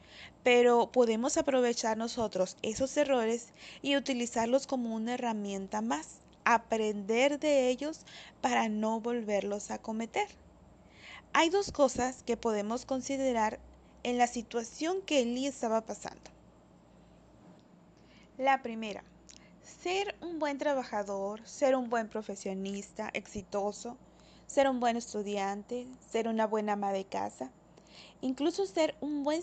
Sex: female